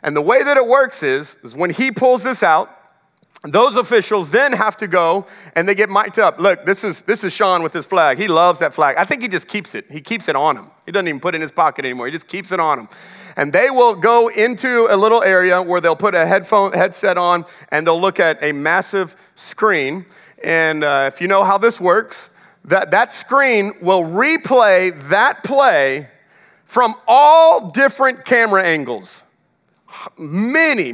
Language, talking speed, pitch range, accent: English, 205 wpm, 185-270 Hz, American